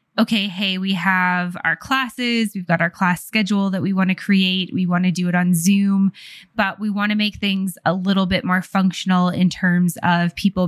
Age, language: 20-39, English